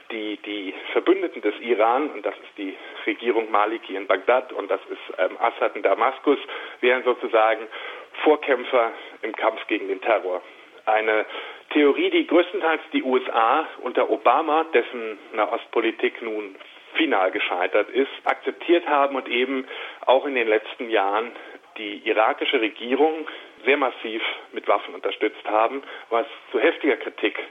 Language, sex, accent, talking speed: German, male, German, 140 wpm